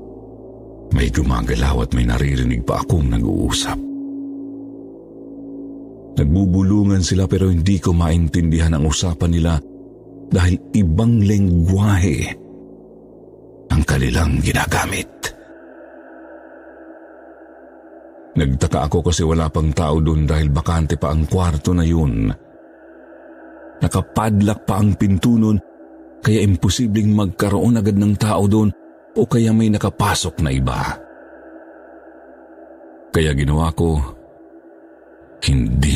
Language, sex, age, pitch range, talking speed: Filipino, male, 50-69, 80-115 Hz, 95 wpm